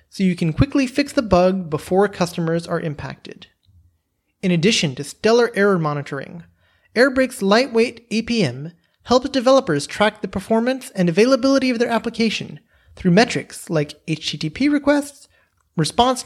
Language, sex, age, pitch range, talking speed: English, male, 30-49, 160-235 Hz, 135 wpm